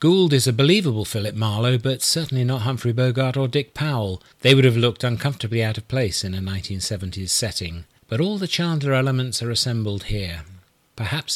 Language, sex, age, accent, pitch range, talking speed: English, male, 40-59, British, 105-135 Hz, 185 wpm